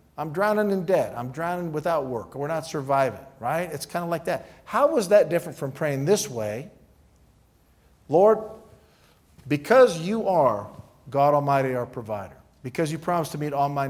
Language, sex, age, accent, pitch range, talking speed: English, male, 50-69, American, 120-160 Hz, 175 wpm